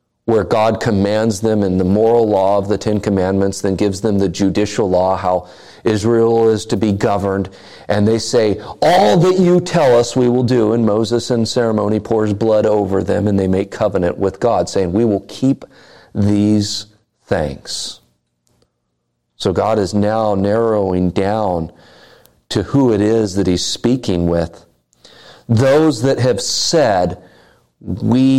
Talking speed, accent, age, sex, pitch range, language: 155 wpm, American, 40-59, male, 90-110 Hz, English